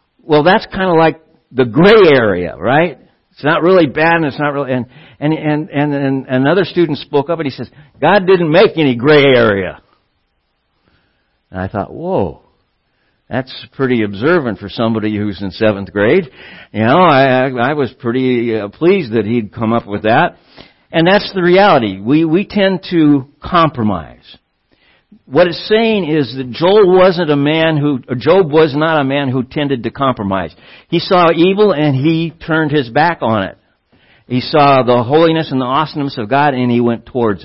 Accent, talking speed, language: American, 180 wpm, English